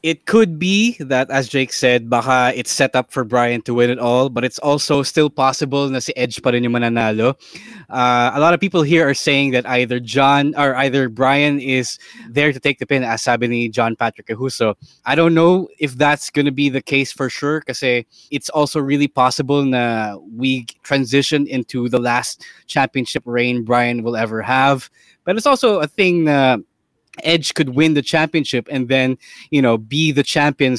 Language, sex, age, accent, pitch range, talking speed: English, male, 20-39, Filipino, 125-145 Hz, 190 wpm